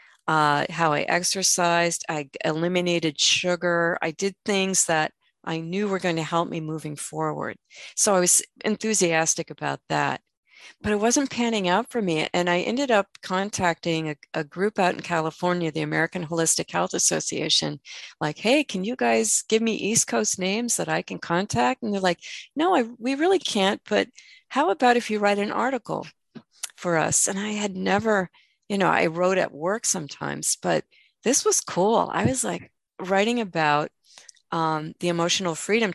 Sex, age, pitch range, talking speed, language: female, 40-59, 165-205 Hz, 175 wpm, English